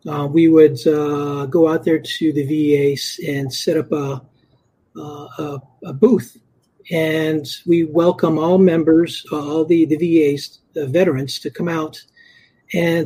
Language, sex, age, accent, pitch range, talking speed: English, male, 50-69, American, 140-170 Hz, 155 wpm